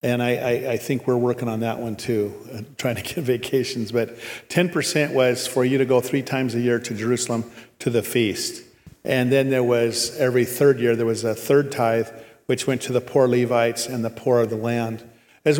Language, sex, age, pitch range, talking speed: English, male, 50-69, 115-140 Hz, 215 wpm